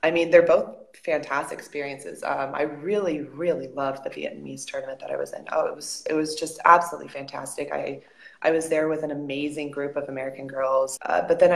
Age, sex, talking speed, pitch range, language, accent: 20-39, female, 210 wpm, 150-180 Hz, English, American